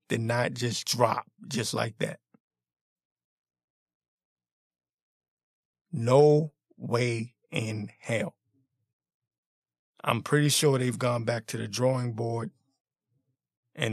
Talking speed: 95 wpm